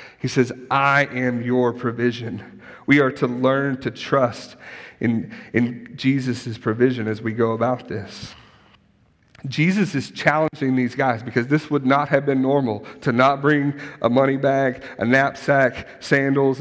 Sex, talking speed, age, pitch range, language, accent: male, 150 wpm, 40-59, 115-140 Hz, English, American